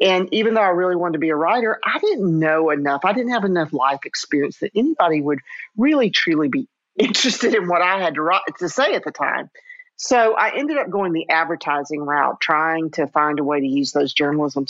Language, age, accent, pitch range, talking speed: English, 50-69, American, 150-210 Hz, 220 wpm